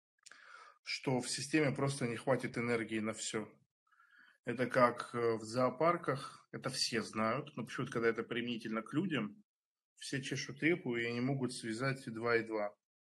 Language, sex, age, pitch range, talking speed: Russian, male, 20-39, 115-130 Hz, 150 wpm